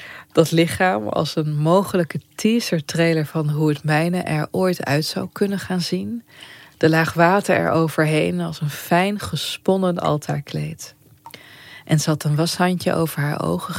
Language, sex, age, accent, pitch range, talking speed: Dutch, female, 20-39, Dutch, 150-175 Hz, 150 wpm